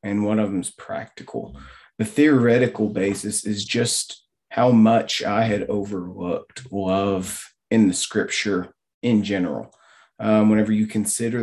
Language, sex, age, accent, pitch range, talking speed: English, male, 40-59, American, 100-110 Hz, 135 wpm